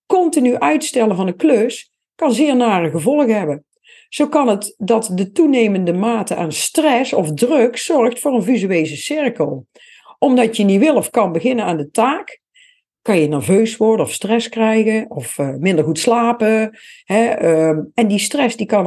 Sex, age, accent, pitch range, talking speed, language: female, 50-69, Dutch, 195-260 Hz, 160 wpm, Dutch